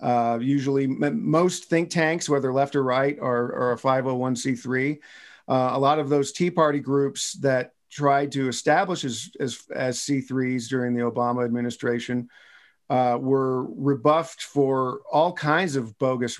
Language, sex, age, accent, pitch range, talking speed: English, male, 50-69, American, 125-150 Hz, 155 wpm